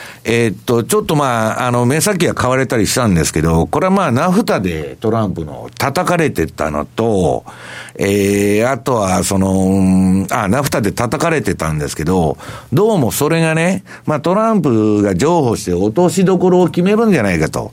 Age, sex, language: 60-79, male, Japanese